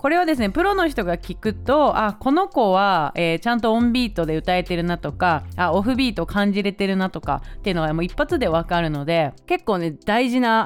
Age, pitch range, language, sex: 30-49, 175-265 Hz, Japanese, female